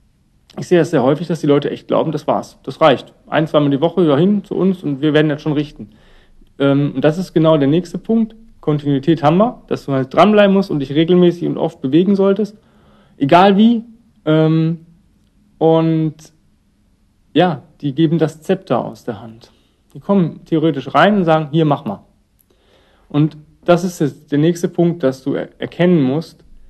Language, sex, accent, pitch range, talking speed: German, male, German, 145-190 Hz, 180 wpm